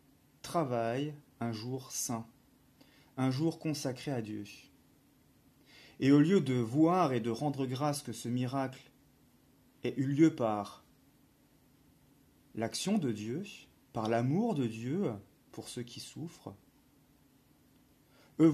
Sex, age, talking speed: male, 40-59, 120 wpm